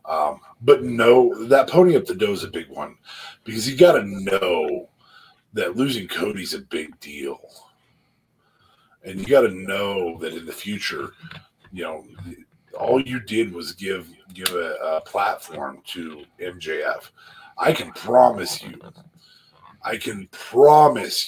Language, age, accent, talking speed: English, 40-59, American, 140 wpm